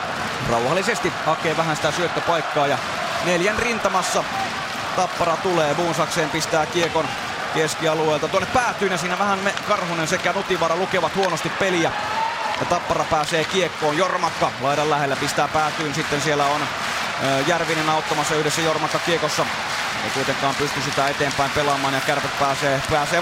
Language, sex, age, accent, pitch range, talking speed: Finnish, male, 20-39, native, 155-185 Hz, 130 wpm